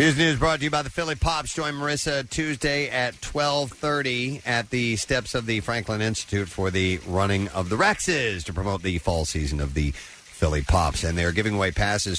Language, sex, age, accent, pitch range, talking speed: English, male, 50-69, American, 95-125 Hz, 200 wpm